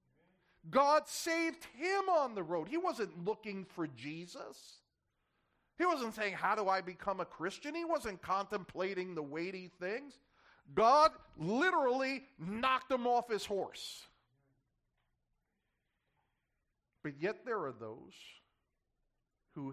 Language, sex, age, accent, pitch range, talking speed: English, male, 50-69, American, 155-260 Hz, 120 wpm